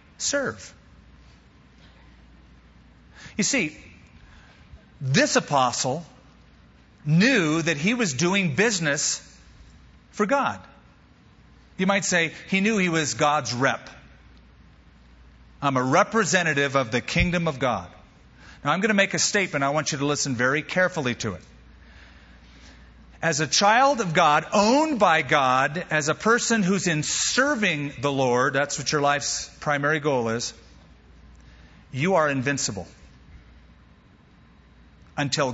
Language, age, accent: English, 40-59, American